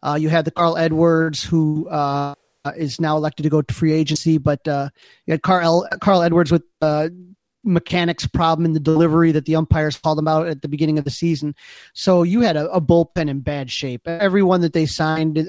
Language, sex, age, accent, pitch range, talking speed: English, male, 30-49, American, 155-170 Hz, 215 wpm